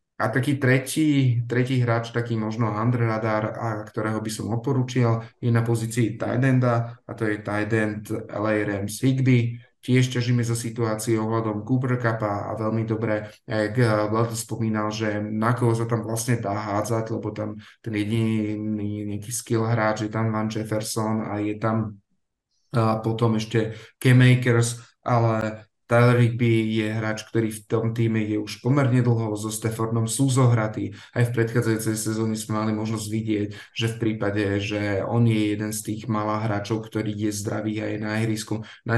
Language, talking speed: Slovak, 160 wpm